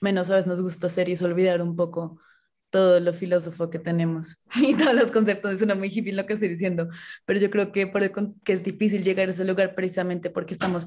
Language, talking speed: Spanish, 250 wpm